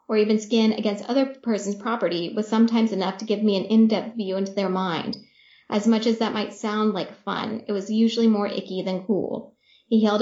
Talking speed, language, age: 210 wpm, English, 20-39